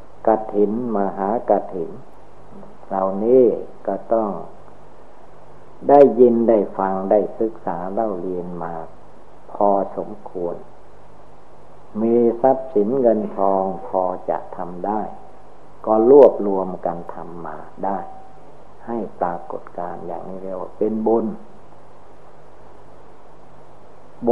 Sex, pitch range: male, 95-115 Hz